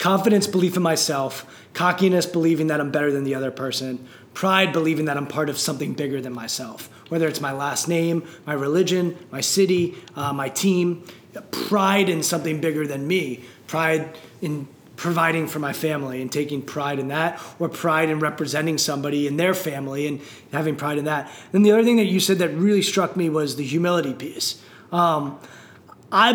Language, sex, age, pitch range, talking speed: English, male, 20-39, 150-200 Hz, 185 wpm